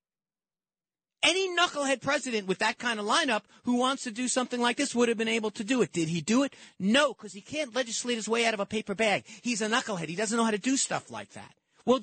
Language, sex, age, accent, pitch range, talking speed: English, male, 40-59, American, 190-250 Hz, 255 wpm